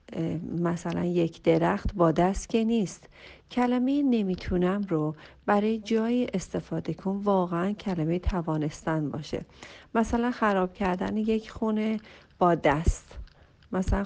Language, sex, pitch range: Persian, female, 175-230 Hz